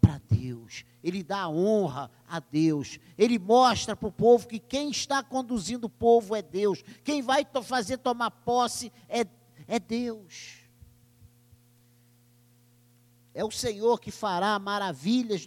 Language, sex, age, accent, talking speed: Portuguese, male, 50-69, Brazilian, 130 wpm